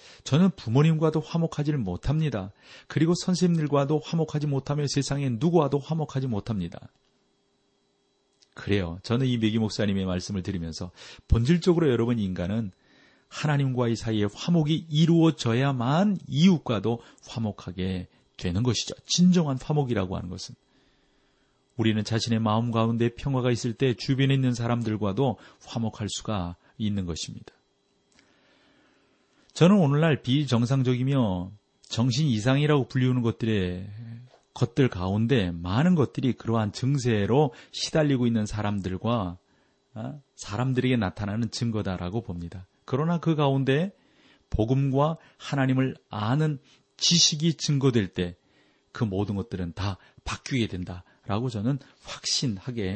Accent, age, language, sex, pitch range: native, 40-59, Korean, male, 105-140 Hz